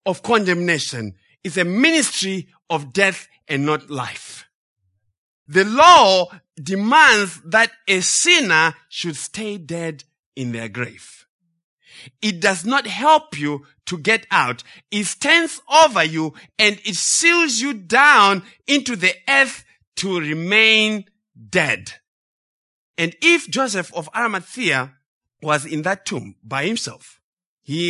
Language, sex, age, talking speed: English, male, 50-69, 125 wpm